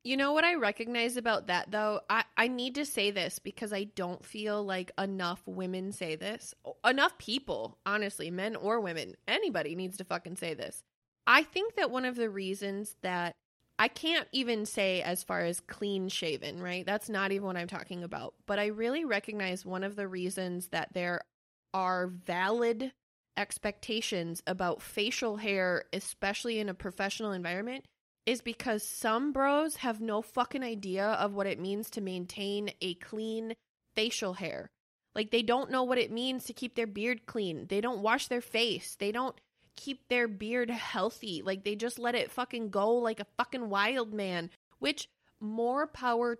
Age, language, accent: 20-39, English, American